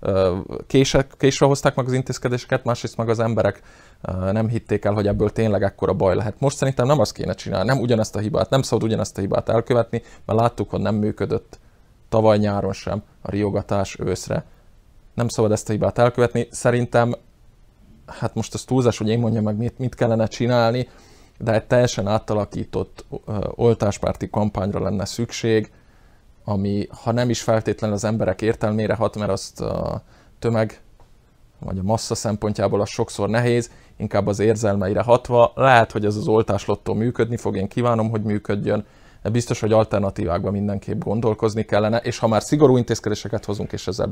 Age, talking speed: 20-39, 165 wpm